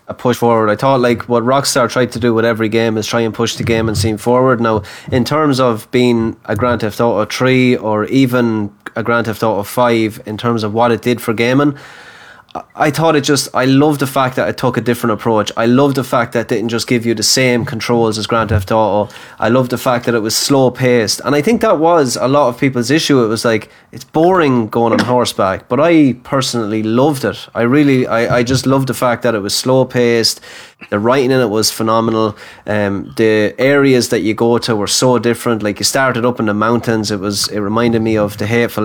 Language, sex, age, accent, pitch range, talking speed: English, male, 20-39, Irish, 110-130 Hz, 235 wpm